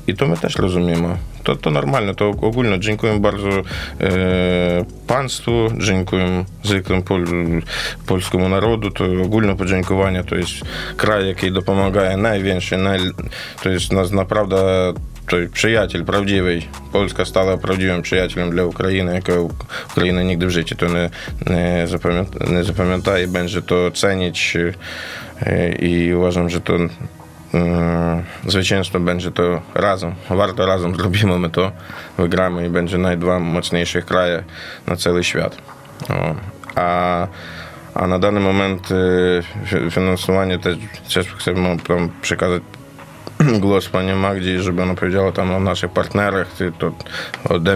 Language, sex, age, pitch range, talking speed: Polish, male, 20-39, 85-95 Hz, 125 wpm